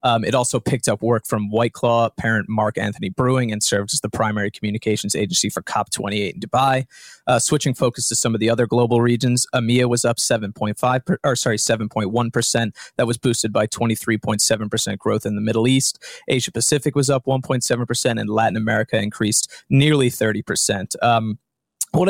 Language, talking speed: English, 175 wpm